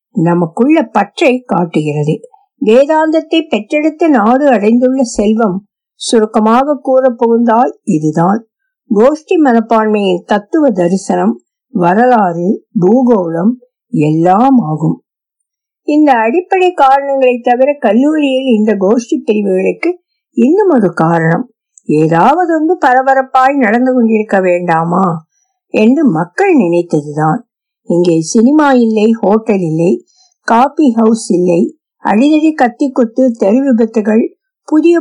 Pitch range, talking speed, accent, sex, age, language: 205-285 Hz, 95 wpm, native, female, 50-69, Tamil